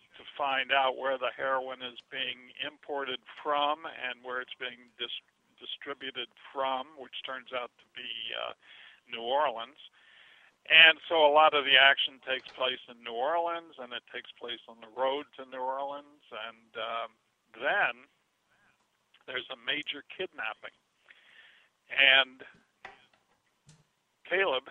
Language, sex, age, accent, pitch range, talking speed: English, male, 50-69, American, 120-145 Hz, 135 wpm